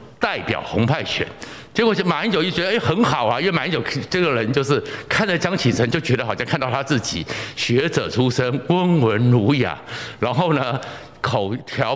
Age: 60-79